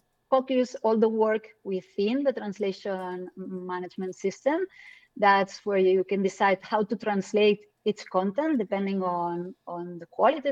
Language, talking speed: English, 135 wpm